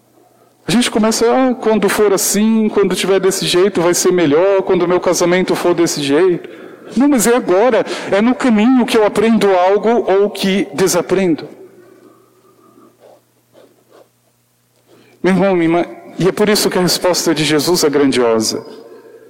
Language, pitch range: Portuguese, 150-220 Hz